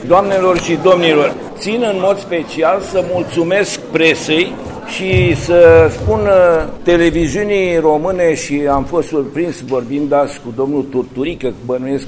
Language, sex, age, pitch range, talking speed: English, male, 60-79, 145-185 Hz, 130 wpm